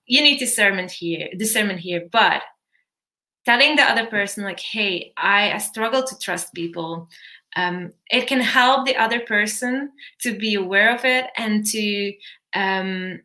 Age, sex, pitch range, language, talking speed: 20-39, female, 190-250 Hz, English, 155 wpm